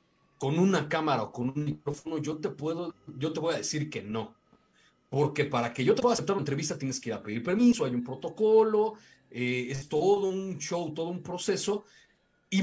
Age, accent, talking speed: 40-59, Mexican, 200 wpm